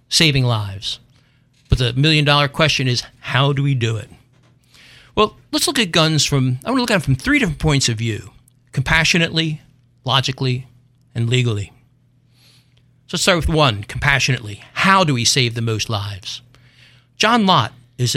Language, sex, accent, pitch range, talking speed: English, male, American, 125-160 Hz, 165 wpm